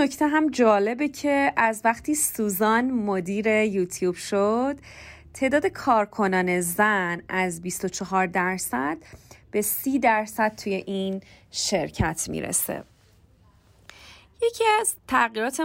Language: Persian